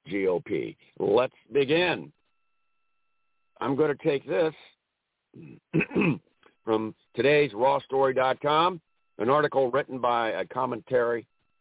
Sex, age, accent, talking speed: male, 60-79, American, 90 wpm